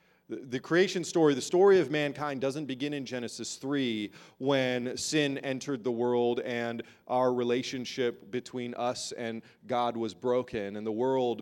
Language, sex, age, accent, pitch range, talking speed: English, male, 30-49, American, 125-170 Hz, 150 wpm